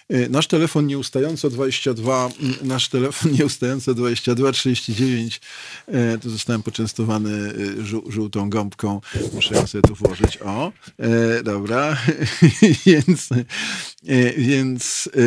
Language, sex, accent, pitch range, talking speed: Polish, male, native, 110-130 Hz, 90 wpm